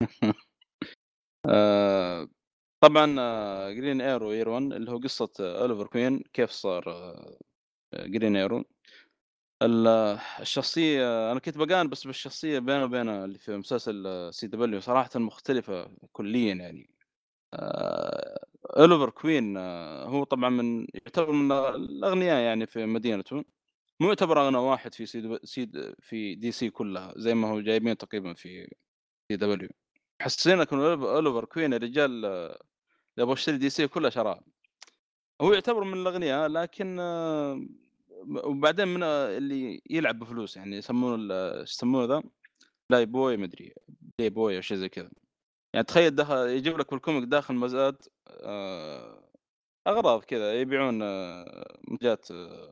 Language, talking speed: Arabic, 120 wpm